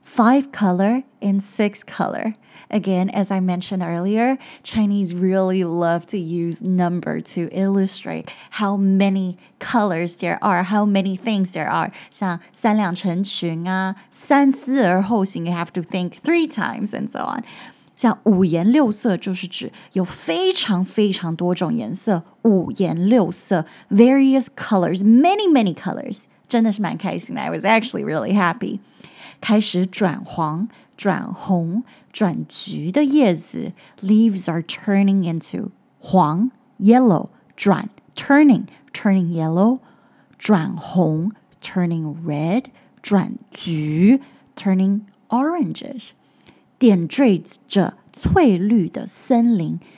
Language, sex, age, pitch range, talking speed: English, female, 20-39, 185-235 Hz, 80 wpm